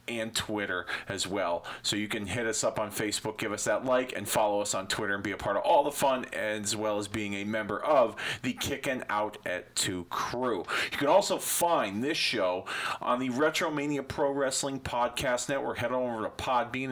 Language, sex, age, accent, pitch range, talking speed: English, male, 40-59, American, 105-130 Hz, 210 wpm